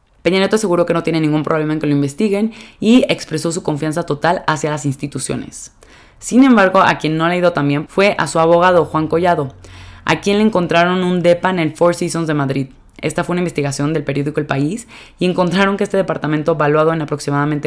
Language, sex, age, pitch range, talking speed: Spanish, female, 20-39, 145-170 Hz, 205 wpm